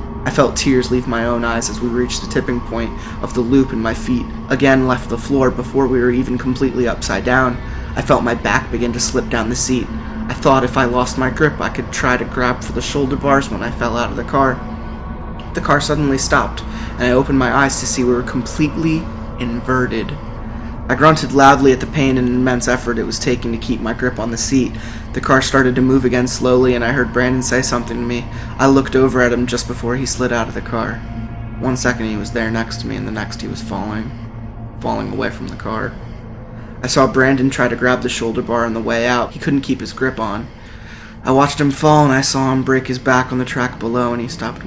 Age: 20-39